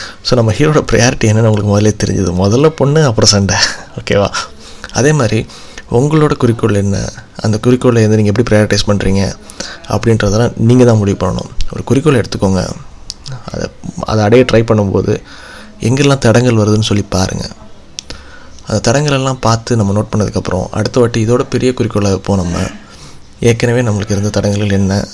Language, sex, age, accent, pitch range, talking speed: Tamil, male, 20-39, native, 100-115 Hz, 145 wpm